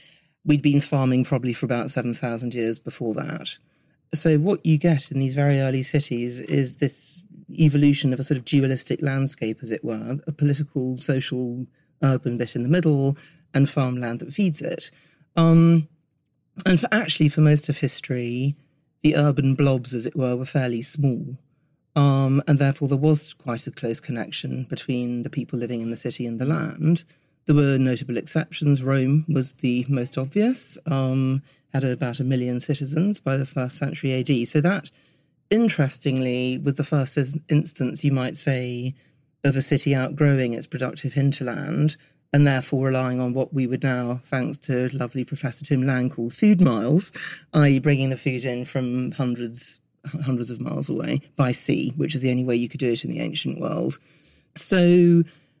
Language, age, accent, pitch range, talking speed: English, 40-59, British, 130-150 Hz, 175 wpm